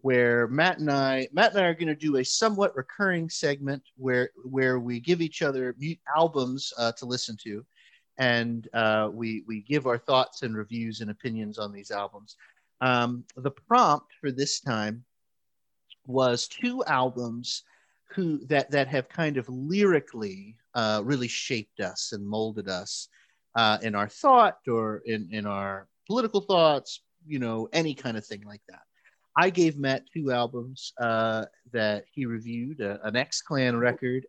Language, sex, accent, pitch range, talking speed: English, male, American, 110-145 Hz, 165 wpm